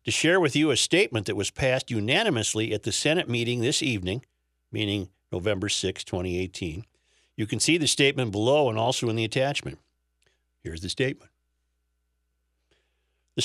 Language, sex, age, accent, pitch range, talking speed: English, male, 50-69, American, 100-135 Hz, 155 wpm